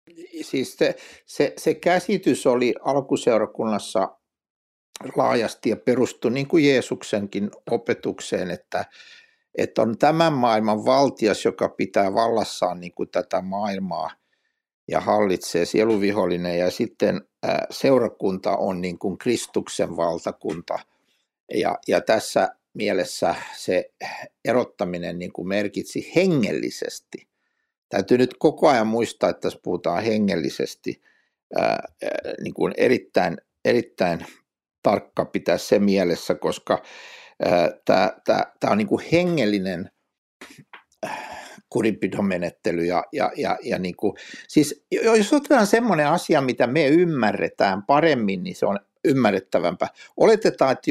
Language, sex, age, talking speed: Finnish, male, 60-79, 110 wpm